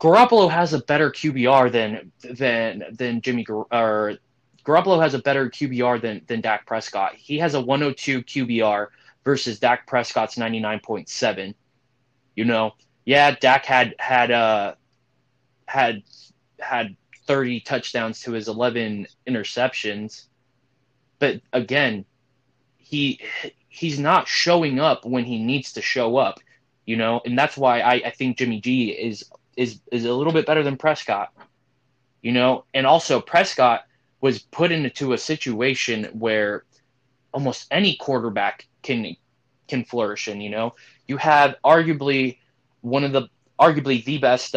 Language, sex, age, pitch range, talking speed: English, male, 20-39, 120-135 Hz, 140 wpm